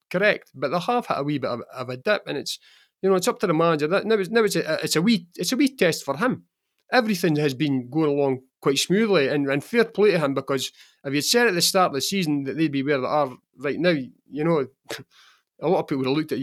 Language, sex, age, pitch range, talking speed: English, male, 30-49, 135-180 Hz, 280 wpm